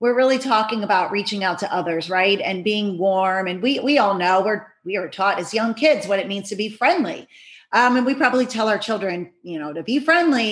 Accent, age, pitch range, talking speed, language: American, 30-49, 190-245 Hz, 240 wpm, English